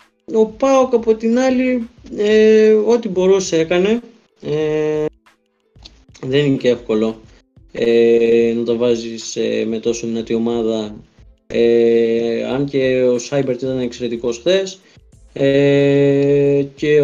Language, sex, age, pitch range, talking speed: Greek, male, 20-39, 125-170 Hz, 115 wpm